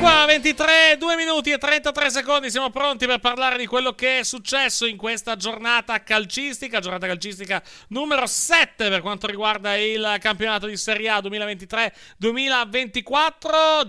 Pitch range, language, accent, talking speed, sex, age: 180-250 Hz, Italian, native, 140 wpm, male, 30-49